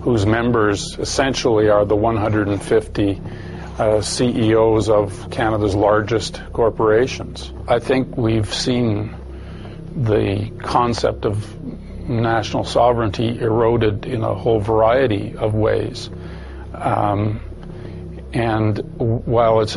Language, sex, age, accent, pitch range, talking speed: English, male, 50-69, American, 105-120 Hz, 95 wpm